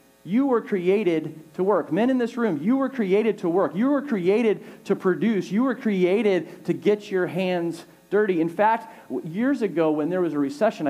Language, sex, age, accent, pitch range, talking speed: English, male, 40-59, American, 165-225 Hz, 200 wpm